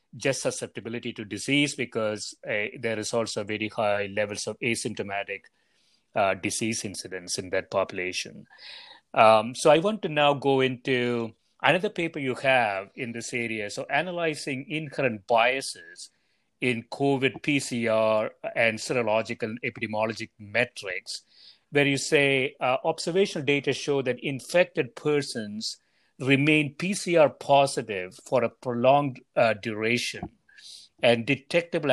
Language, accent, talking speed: English, Indian, 125 wpm